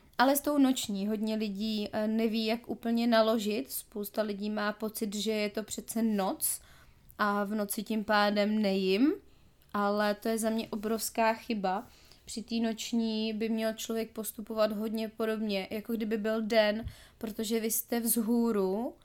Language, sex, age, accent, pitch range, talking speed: Czech, female, 20-39, native, 215-230 Hz, 155 wpm